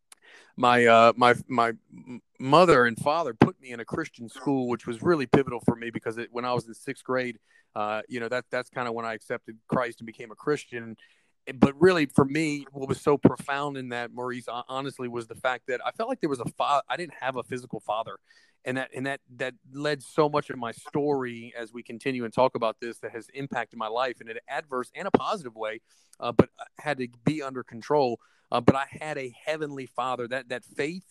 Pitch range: 120-140 Hz